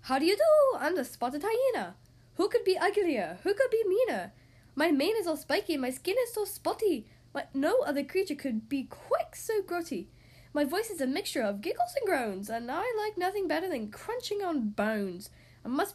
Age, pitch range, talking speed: 10-29, 210-340 Hz, 205 wpm